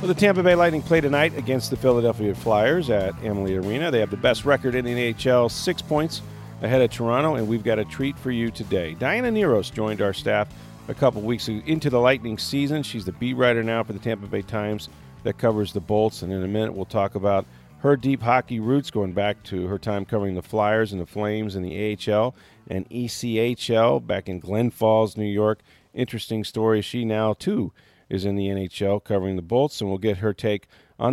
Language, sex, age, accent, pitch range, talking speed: English, male, 40-59, American, 105-130 Hz, 215 wpm